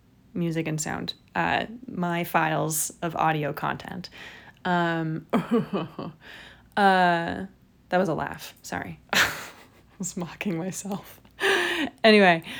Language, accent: English, American